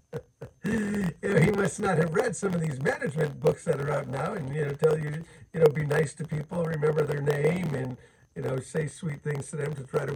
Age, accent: 50-69, American